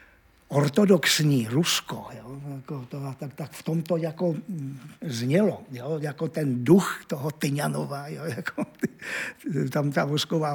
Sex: male